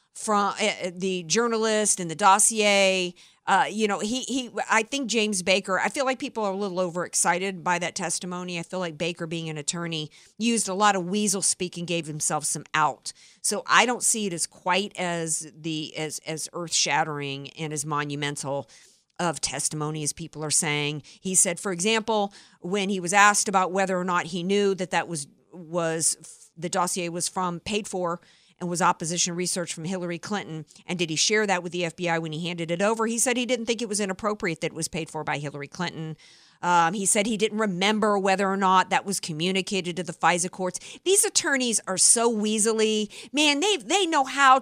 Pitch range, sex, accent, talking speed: 170-210 Hz, female, American, 205 wpm